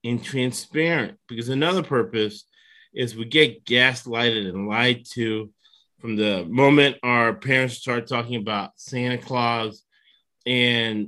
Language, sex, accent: English, male, American